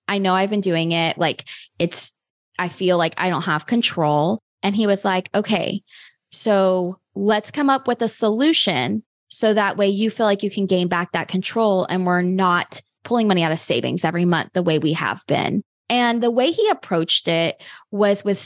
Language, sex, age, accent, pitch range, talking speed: English, female, 20-39, American, 175-230 Hz, 200 wpm